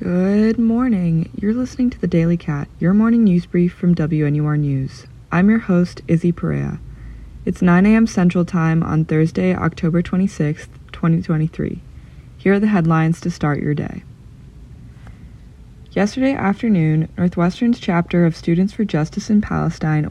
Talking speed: 145 wpm